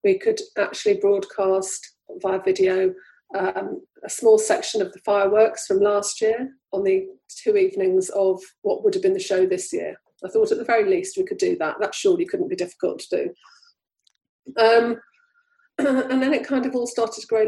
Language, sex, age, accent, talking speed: English, female, 40-59, British, 190 wpm